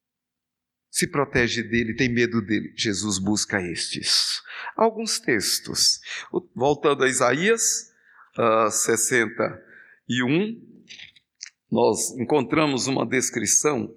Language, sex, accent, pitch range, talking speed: Portuguese, male, Brazilian, 120-175 Hz, 85 wpm